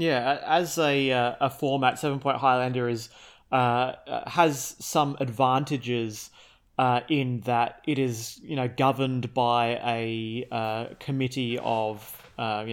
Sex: male